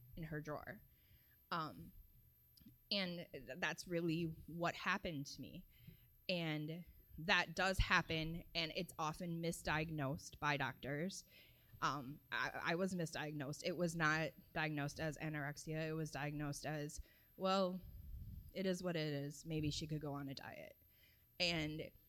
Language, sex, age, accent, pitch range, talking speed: English, female, 20-39, American, 150-170 Hz, 140 wpm